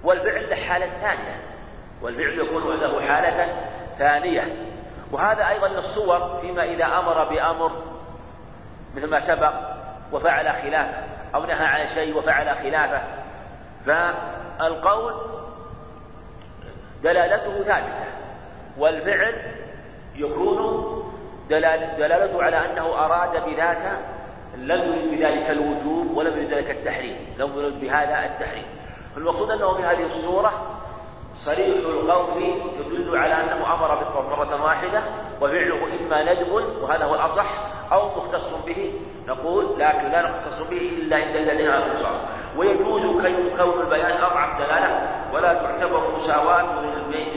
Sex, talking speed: male, 110 wpm